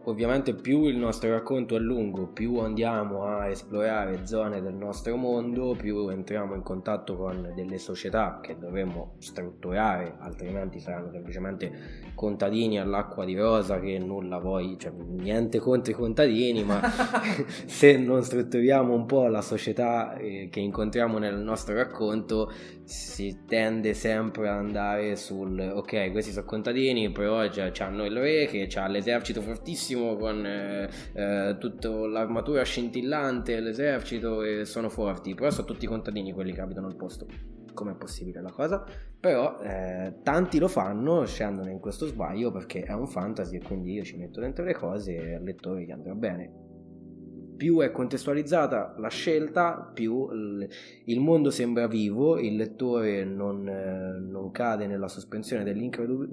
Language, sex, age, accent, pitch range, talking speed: Italian, male, 20-39, native, 95-120 Hz, 150 wpm